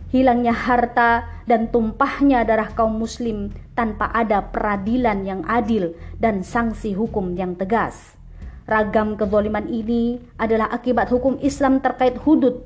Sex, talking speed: female, 125 wpm